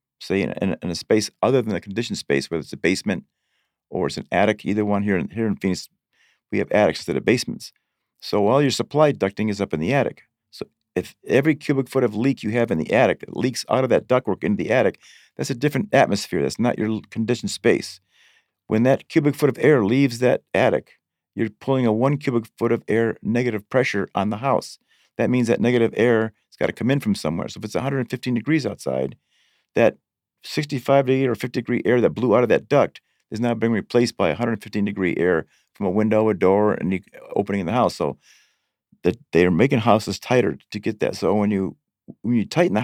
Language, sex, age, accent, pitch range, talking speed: English, male, 50-69, American, 100-125 Hz, 225 wpm